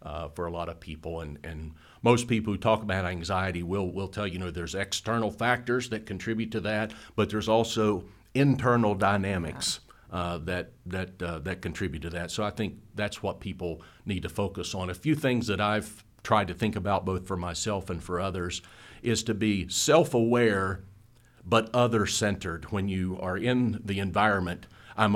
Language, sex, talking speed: English, male, 185 wpm